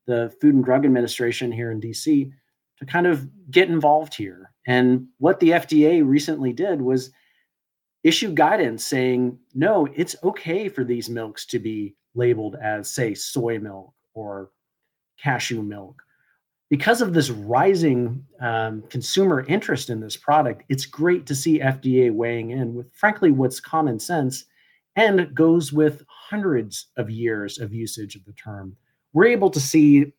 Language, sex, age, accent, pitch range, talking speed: English, male, 40-59, American, 115-155 Hz, 155 wpm